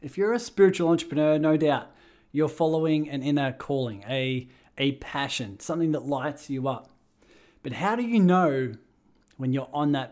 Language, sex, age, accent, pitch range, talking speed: English, male, 20-39, Australian, 125-150 Hz, 170 wpm